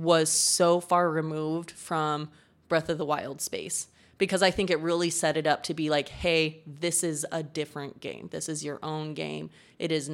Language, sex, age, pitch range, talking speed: English, female, 20-39, 155-175 Hz, 200 wpm